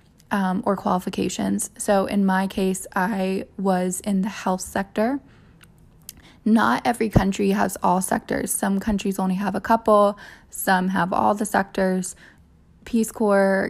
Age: 20-39